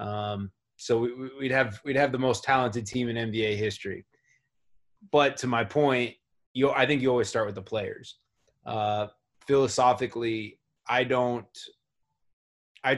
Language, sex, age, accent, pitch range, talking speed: English, male, 20-39, American, 105-120 Hz, 145 wpm